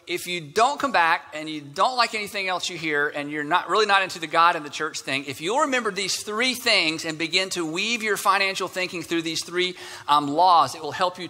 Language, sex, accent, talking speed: English, male, American, 250 wpm